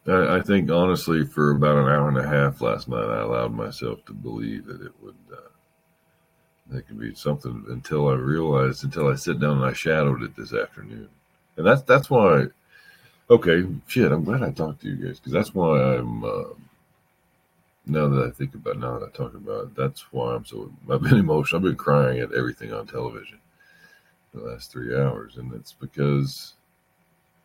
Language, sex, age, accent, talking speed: English, male, 50-69, American, 200 wpm